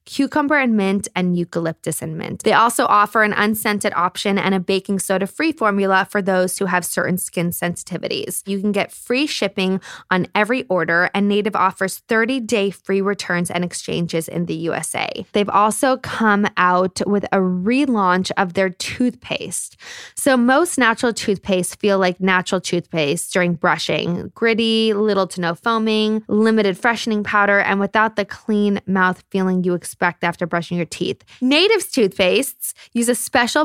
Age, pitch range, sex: 20-39, 185-225 Hz, female